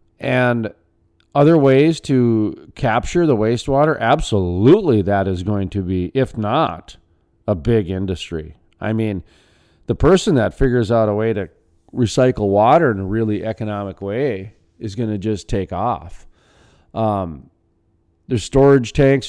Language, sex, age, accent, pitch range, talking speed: English, male, 40-59, American, 95-130 Hz, 140 wpm